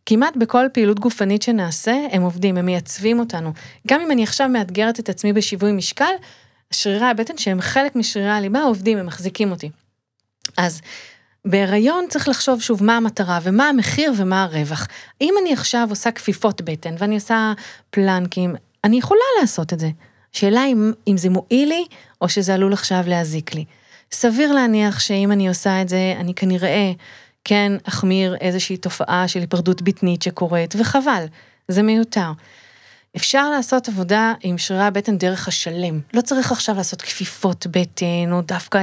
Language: Hebrew